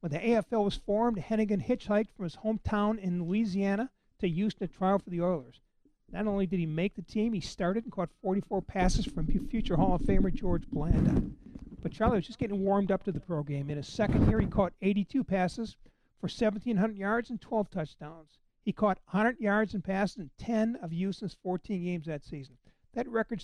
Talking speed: 205 wpm